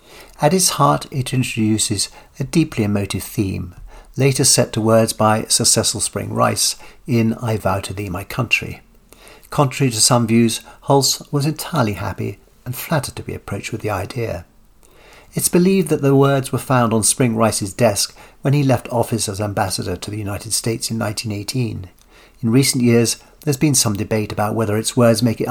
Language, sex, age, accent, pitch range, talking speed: English, male, 60-79, British, 105-130 Hz, 180 wpm